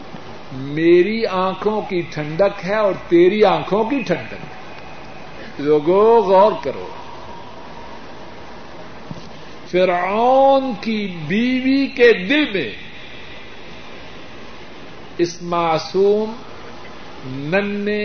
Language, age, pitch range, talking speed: Urdu, 50-69, 170-215 Hz, 75 wpm